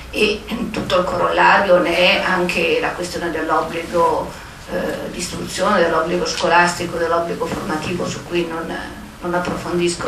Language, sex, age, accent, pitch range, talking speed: Italian, female, 40-59, native, 170-220 Hz, 135 wpm